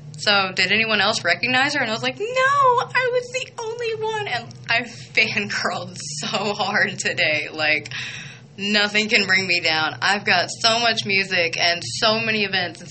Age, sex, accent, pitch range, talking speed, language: 20-39, female, American, 155-220 Hz, 180 wpm, English